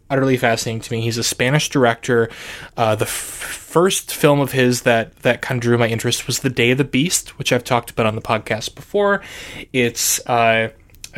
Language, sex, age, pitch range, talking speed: English, male, 20-39, 115-145 Hz, 200 wpm